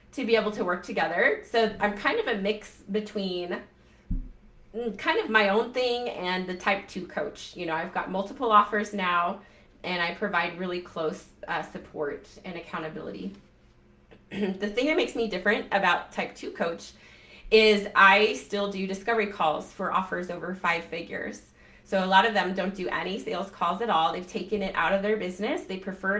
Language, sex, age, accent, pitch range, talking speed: English, female, 30-49, American, 185-215 Hz, 185 wpm